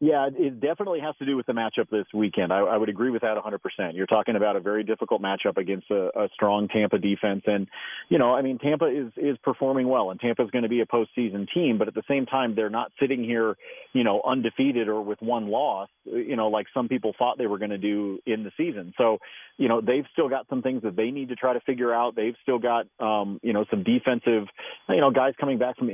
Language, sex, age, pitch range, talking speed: English, male, 40-59, 110-140 Hz, 250 wpm